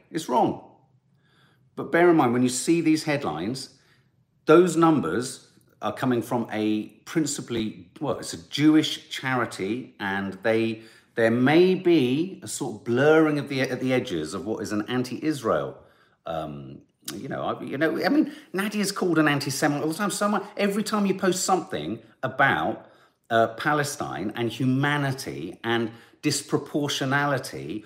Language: English